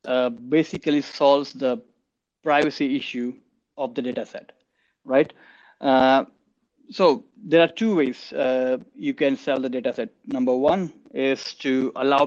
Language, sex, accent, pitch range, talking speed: English, male, Indian, 125-150 Hz, 140 wpm